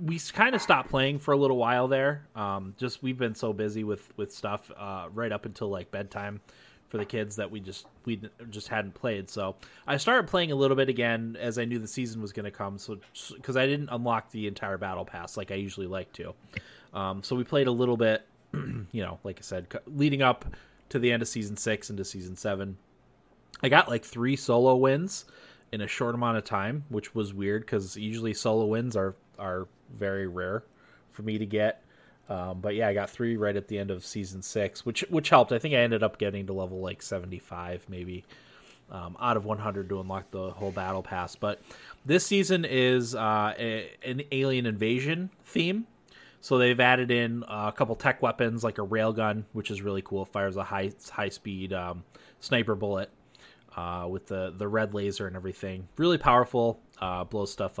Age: 20-39